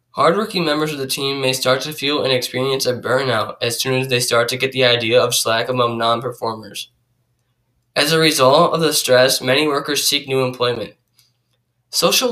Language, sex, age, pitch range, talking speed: English, male, 10-29, 120-145 Hz, 185 wpm